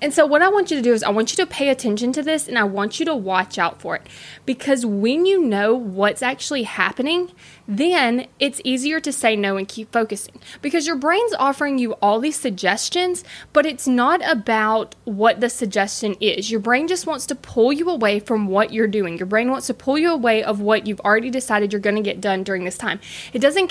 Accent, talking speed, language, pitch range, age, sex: American, 230 wpm, English, 210-295 Hz, 20-39, female